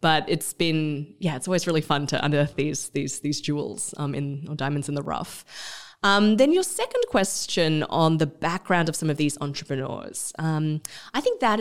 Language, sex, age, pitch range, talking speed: English, female, 20-39, 145-210 Hz, 195 wpm